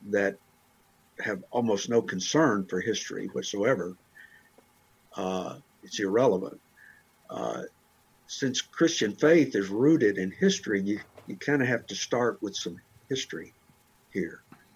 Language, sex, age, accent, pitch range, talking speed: English, male, 60-79, American, 100-130 Hz, 120 wpm